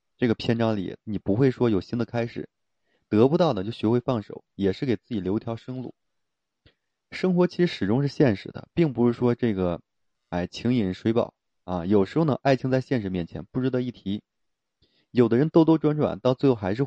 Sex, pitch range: male, 95-135 Hz